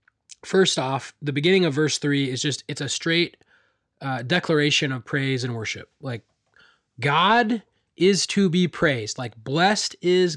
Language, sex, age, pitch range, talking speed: English, male, 20-39, 135-175 Hz, 155 wpm